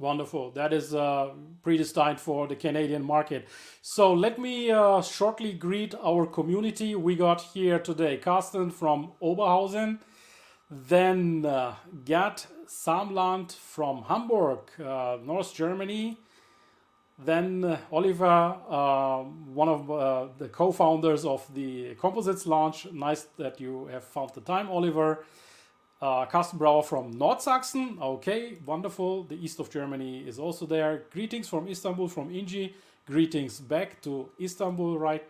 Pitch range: 135-180 Hz